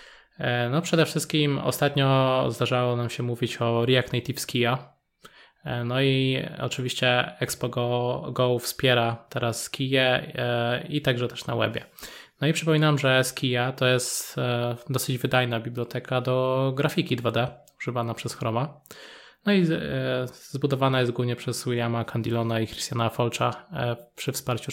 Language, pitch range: Polish, 120-140 Hz